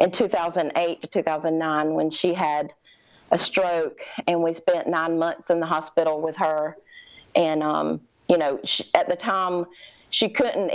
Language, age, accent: English, 40-59, American